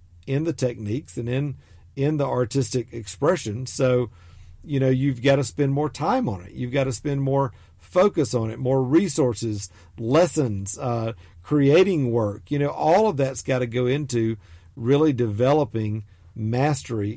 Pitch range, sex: 115-150 Hz, male